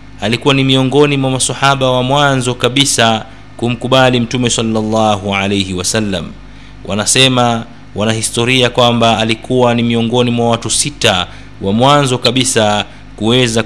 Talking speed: 120 wpm